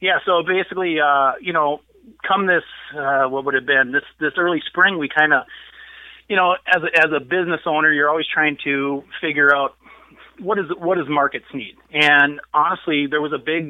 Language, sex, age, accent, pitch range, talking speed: English, male, 30-49, American, 145-170 Hz, 195 wpm